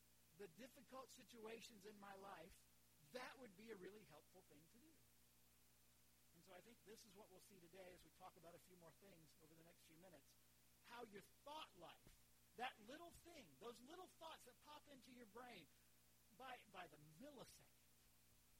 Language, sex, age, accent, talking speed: English, male, 50-69, American, 185 wpm